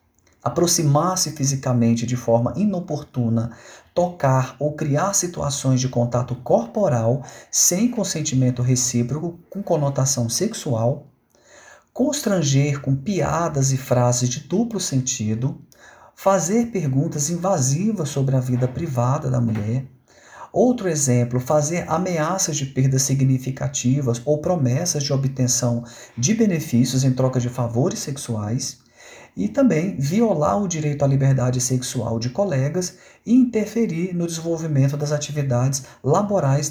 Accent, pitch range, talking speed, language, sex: Brazilian, 125-170 Hz, 115 wpm, Portuguese, male